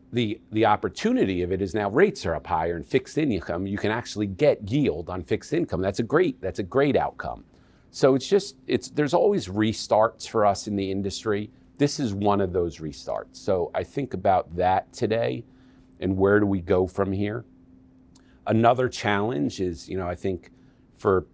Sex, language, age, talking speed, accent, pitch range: male, English, 40-59, 190 wpm, American, 90-110 Hz